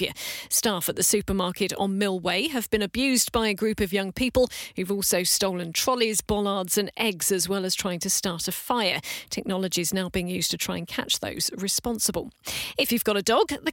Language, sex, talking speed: English, female, 205 wpm